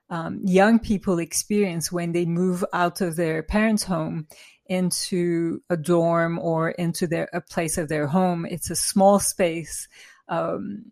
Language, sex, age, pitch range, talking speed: English, female, 30-49, 170-190 Hz, 155 wpm